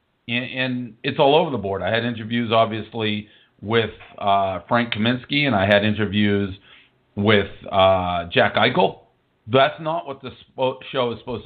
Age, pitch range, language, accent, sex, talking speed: 50-69, 105-130 Hz, English, American, male, 150 wpm